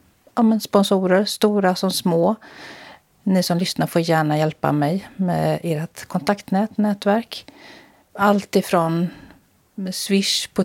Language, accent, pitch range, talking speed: Swedish, native, 155-205 Hz, 120 wpm